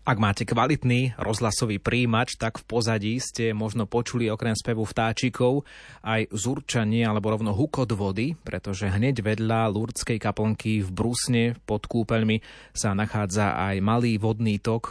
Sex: male